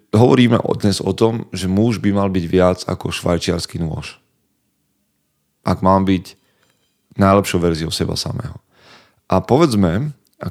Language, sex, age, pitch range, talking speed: Slovak, male, 30-49, 90-105 Hz, 130 wpm